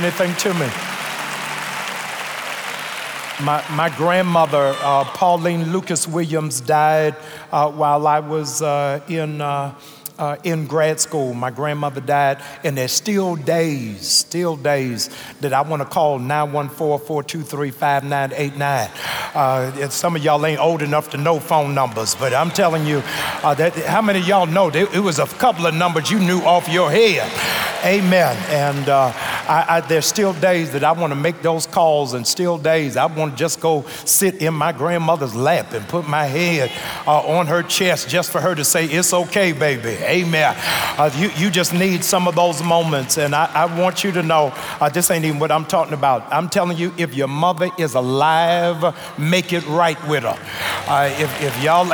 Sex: male